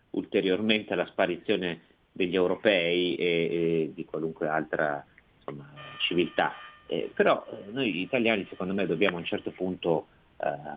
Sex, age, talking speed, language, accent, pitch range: male, 30-49, 140 wpm, Italian, native, 80-95 Hz